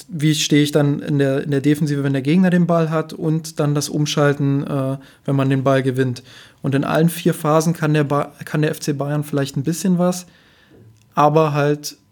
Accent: German